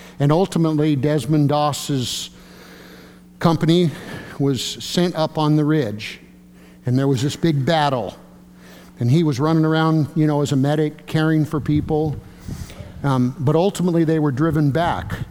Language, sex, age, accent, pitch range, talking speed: English, male, 50-69, American, 125-155 Hz, 145 wpm